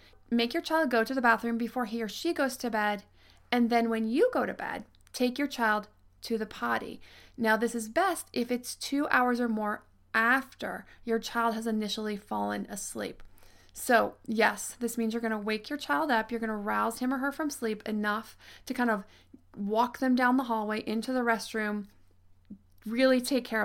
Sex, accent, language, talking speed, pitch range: female, American, English, 200 wpm, 200-245 Hz